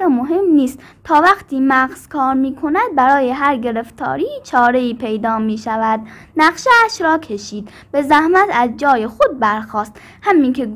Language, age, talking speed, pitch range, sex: Persian, 10-29, 155 wpm, 220-335 Hz, female